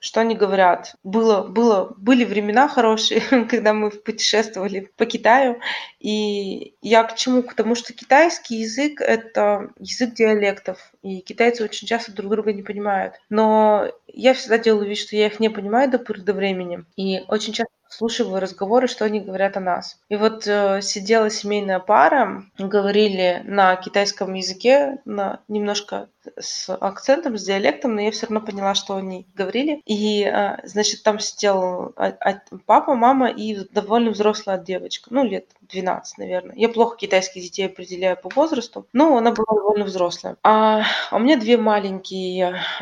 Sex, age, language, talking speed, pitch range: female, 20-39, Russian, 155 wpm, 195-230 Hz